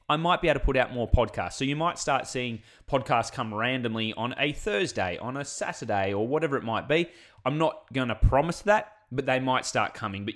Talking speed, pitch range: 230 wpm, 110-145 Hz